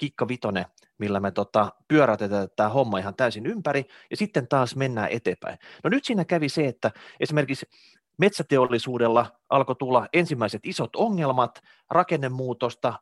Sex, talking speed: male, 135 wpm